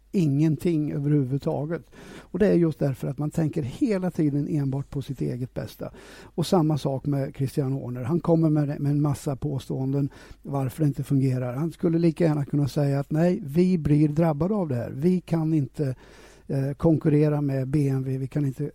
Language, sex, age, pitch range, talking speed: Swedish, male, 60-79, 140-160 Hz, 180 wpm